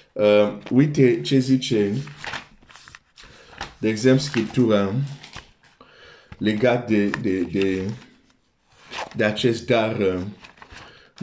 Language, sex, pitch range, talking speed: Romanian, male, 110-150 Hz, 80 wpm